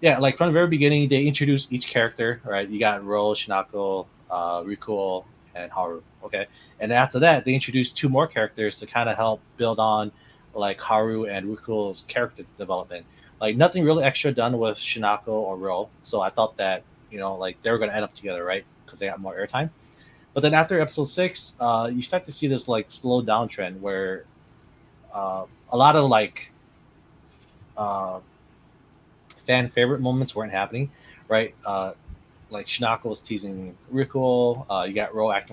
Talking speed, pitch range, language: 180 wpm, 100-135 Hz, English